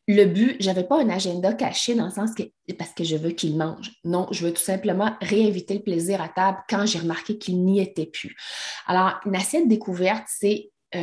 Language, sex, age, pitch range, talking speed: French, female, 30-49, 190-240 Hz, 220 wpm